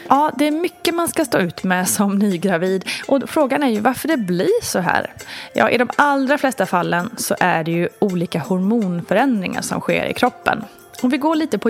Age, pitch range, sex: 20-39, 190-260 Hz, female